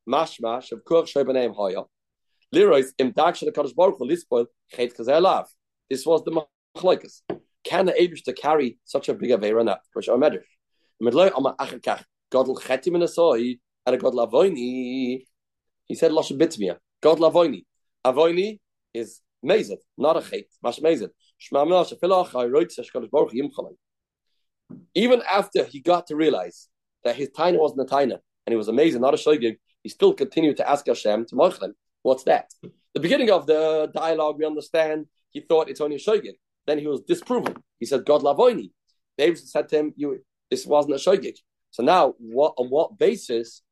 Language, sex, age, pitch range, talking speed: English, male, 30-49, 125-175 Hz, 180 wpm